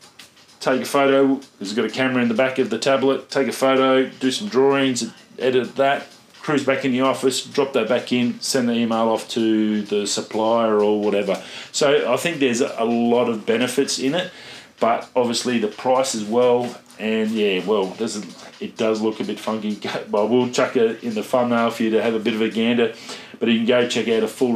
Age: 30-49